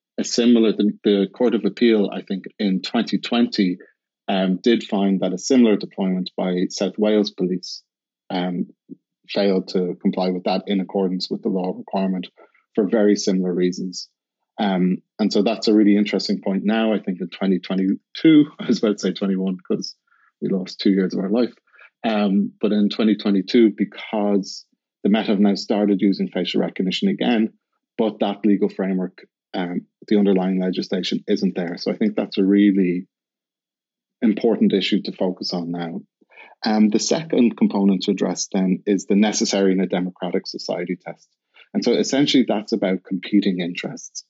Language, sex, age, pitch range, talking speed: English, male, 30-49, 95-105 Hz, 165 wpm